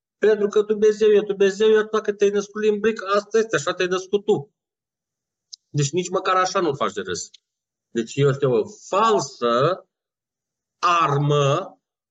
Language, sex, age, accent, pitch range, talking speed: Romanian, male, 40-59, native, 135-205 Hz, 150 wpm